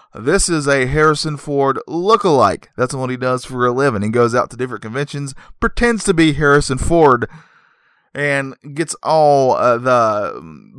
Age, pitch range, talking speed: 20-39, 100-135 Hz, 165 wpm